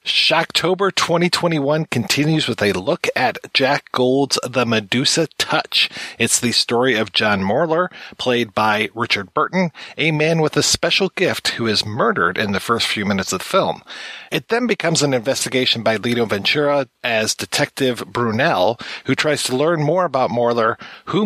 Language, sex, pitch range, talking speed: English, male, 110-145 Hz, 165 wpm